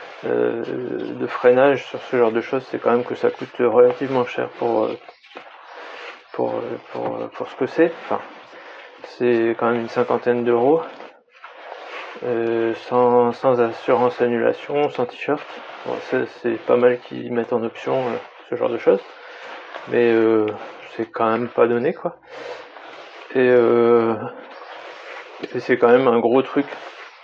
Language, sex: French, male